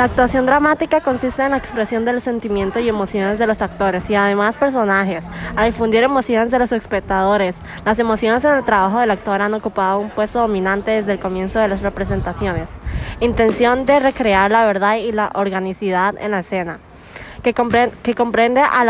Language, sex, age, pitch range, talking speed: English, female, 20-39, 205-245 Hz, 180 wpm